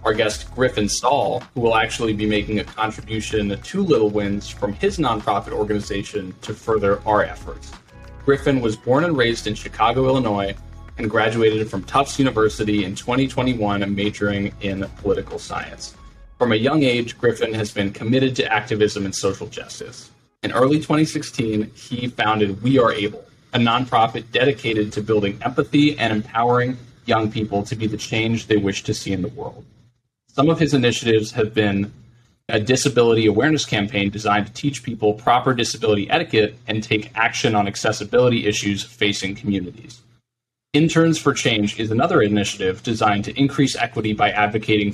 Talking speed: 160 wpm